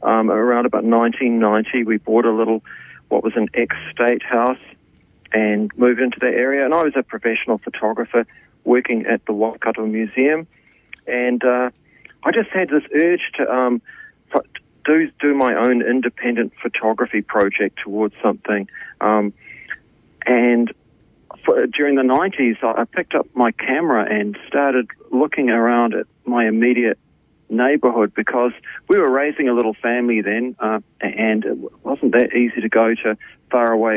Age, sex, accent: 40-59, male, Australian